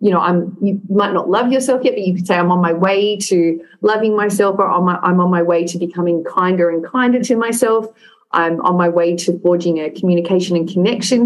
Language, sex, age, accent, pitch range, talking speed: English, female, 30-49, Australian, 175-210 Hz, 235 wpm